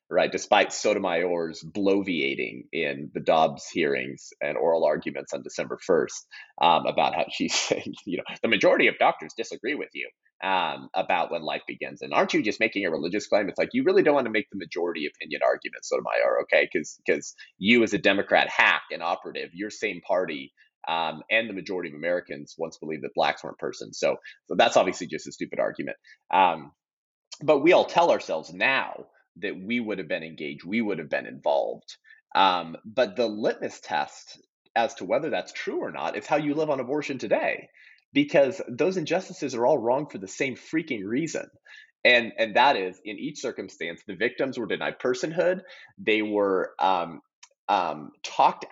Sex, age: male, 30-49